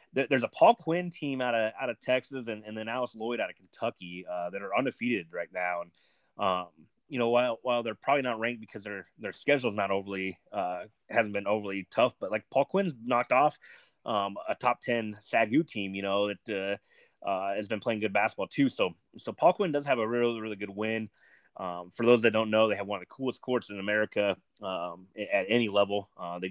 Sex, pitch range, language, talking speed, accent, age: male, 95-120 Hz, English, 225 wpm, American, 30-49